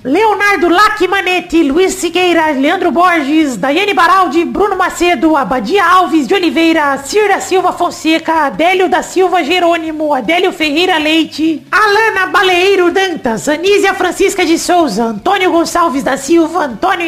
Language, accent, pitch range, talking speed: Portuguese, Brazilian, 310-360 Hz, 125 wpm